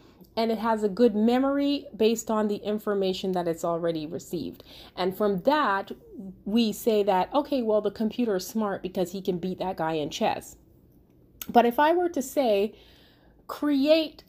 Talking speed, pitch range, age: 170 wpm, 180-230 Hz, 30-49